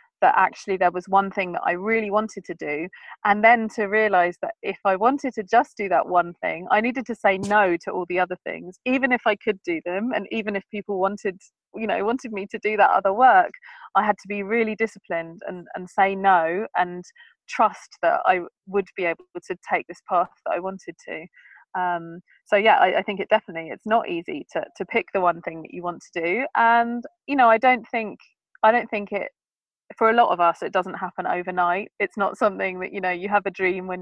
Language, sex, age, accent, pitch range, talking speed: English, female, 30-49, British, 180-225 Hz, 235 wpm